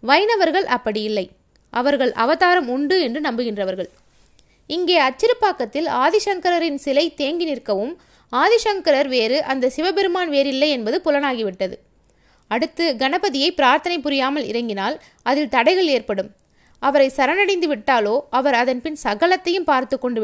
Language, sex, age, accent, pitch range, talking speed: Tamil, female, 20-39, native, 240-325 Hz, 105 wpm